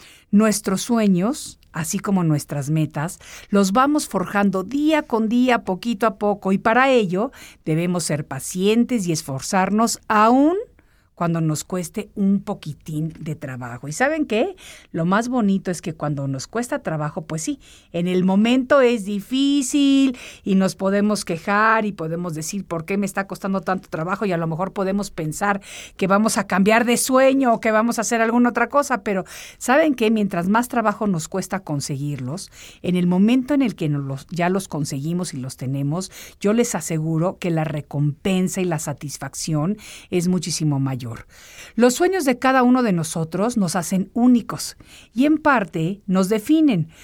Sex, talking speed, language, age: female, 170 wpm, Spanish, 50-69